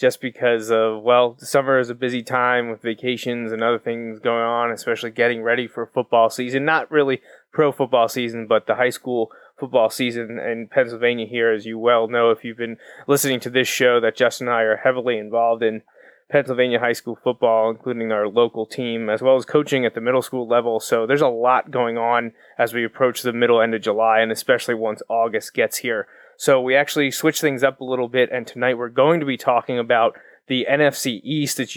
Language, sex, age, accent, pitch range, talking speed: English, male, 20-39, American, 115-130 Hz, 215 wpm